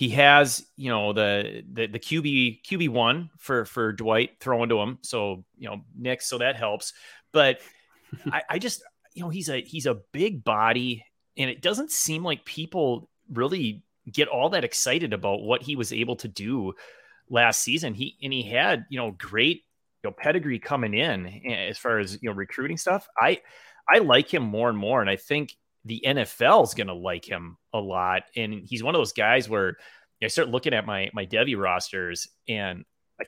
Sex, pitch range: male, 105-140 Hz